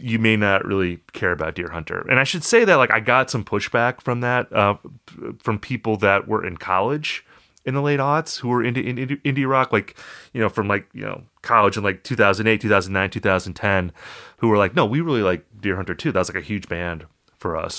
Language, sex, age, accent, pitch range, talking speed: English, male, 30-49, American, 95-125 Hz, 230 wpm